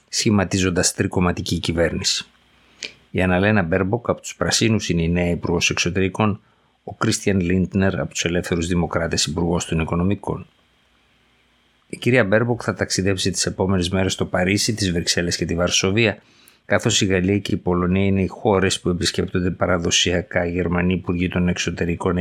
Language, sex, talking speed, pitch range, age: Greek, male, 150 wpm, 85-105 Hz, 50-69